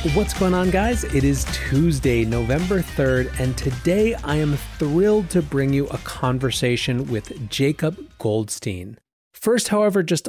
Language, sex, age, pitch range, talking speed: English, male, 30-49, 120-165 Hz, 145 wpm